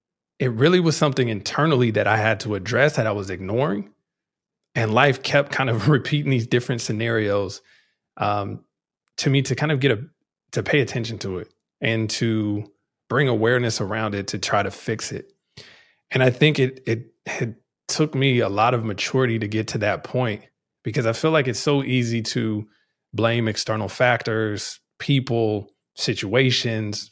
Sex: male